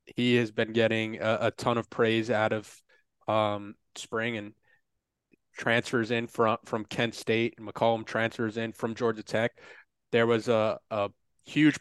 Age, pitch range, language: 20-39, 110-125 Hz, English